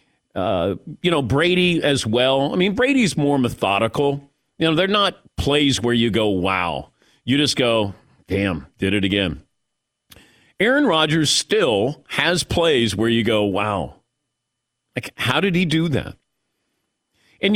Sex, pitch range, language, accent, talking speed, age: male, 115-165 Hz, English, American, 145 wpm, 50-69